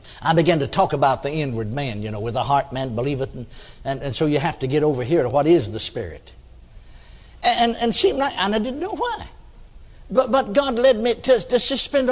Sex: male